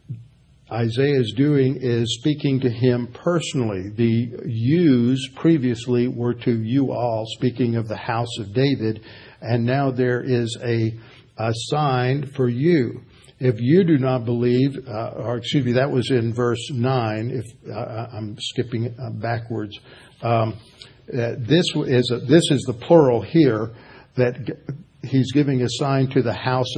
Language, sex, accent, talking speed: English, male, American, 155 wpm